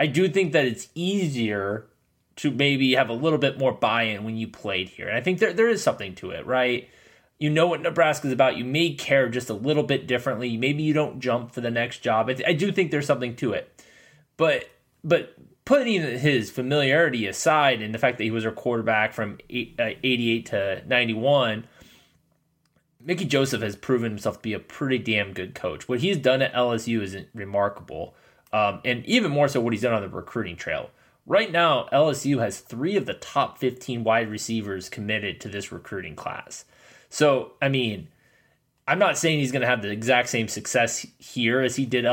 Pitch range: 115-150 Hz